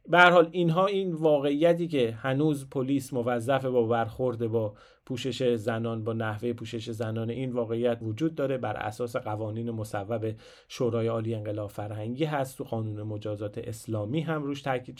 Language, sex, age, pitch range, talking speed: Persian, male, 30-49, 115-150 Hz, 150 wpm